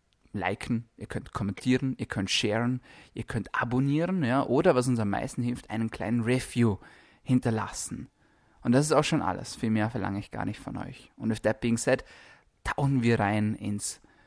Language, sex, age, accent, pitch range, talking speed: German, male, 20-39, German, 110-135 Hz, 180 wpm